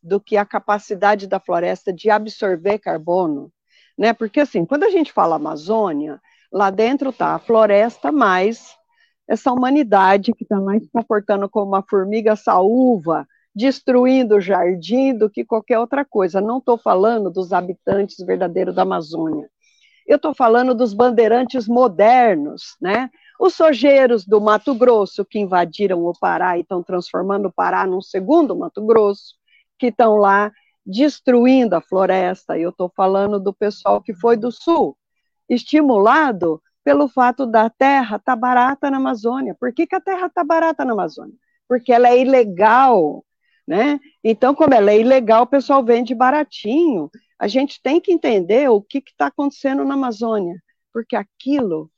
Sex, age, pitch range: female, 50-69, 200-265 Hz